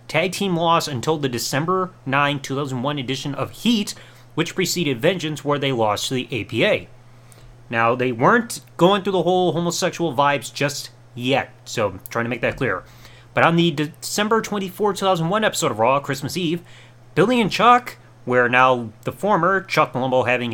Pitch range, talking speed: 125-175 Hz, 170 wpm